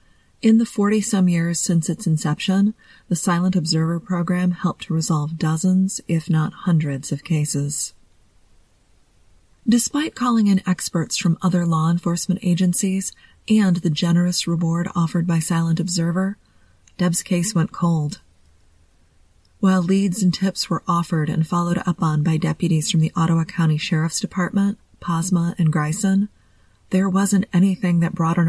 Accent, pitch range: American, 150-180 Hz